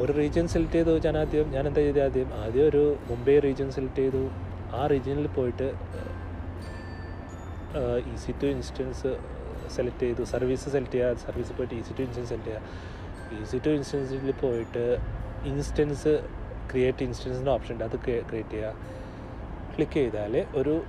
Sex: male